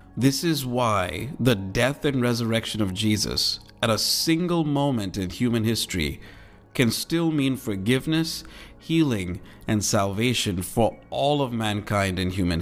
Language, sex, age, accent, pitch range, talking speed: English, male, 50-69, American, 95-125 Hz, 140 wpm